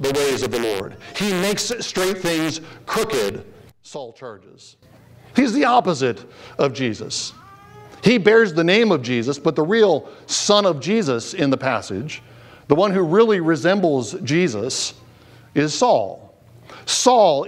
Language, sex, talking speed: English, male, 140 wpm